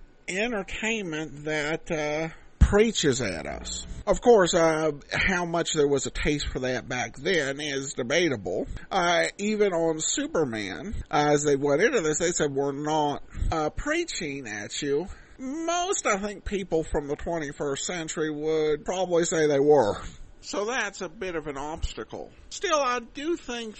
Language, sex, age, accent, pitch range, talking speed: English, male, 50-69, American, 155-230 Hz, 160 wpm